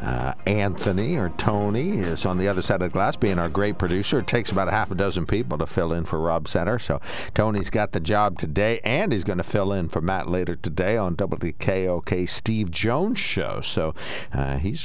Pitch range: 85-105 Hz